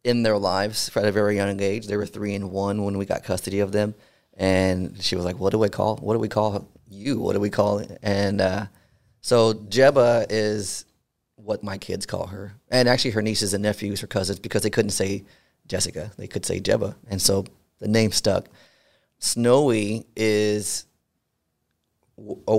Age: 30-49